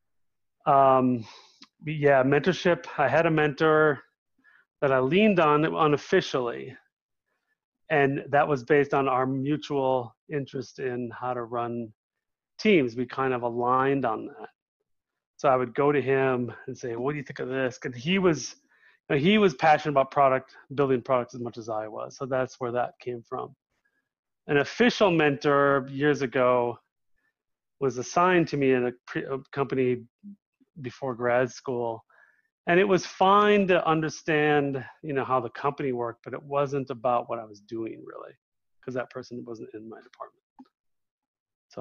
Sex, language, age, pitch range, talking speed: male, English, 30-49, 125-150 Hz, 165 wpm